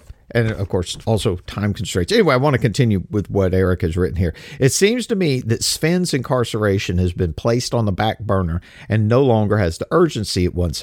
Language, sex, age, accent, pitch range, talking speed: English, male, 50-69, American, 95-130 Hz, 215 wpm